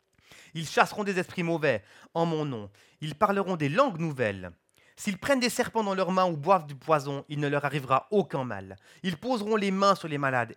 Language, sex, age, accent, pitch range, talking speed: French, male, 30-49, French, 135-190 Hz, 210 wpm